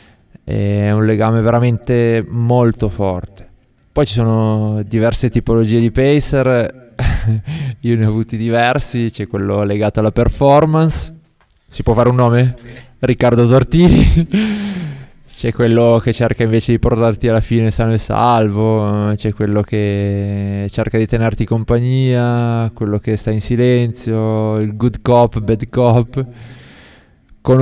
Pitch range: 110-125 Hz